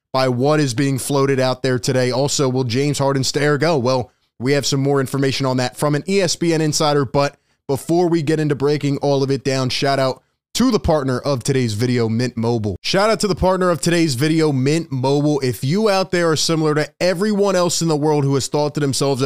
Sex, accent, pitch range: male, American, 130-160 Hz